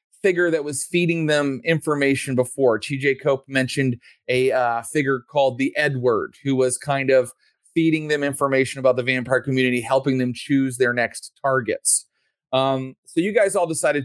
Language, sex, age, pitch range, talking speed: English, male, 30-49, 125-145 Hz, 165 wpm